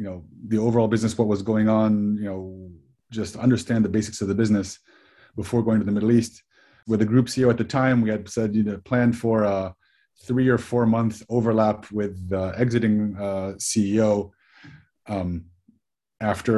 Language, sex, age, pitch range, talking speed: English, male, 30-49, 100-115 Hz, 190 wpm